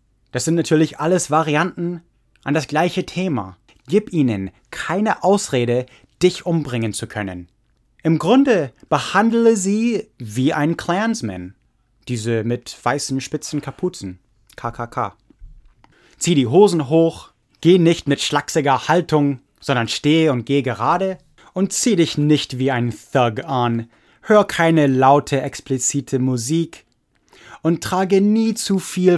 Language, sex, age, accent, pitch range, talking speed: English, male, 20-39, German, 120-180 Hz, 130 wpm